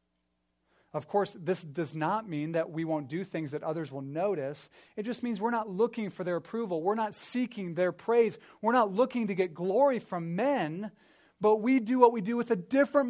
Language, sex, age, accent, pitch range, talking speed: English, male, 30-49, American, 140-200 Hz, 210 wpm